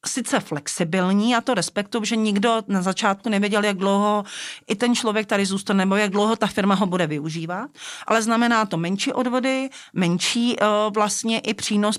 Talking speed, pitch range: 175 wpm, 180-210 Hz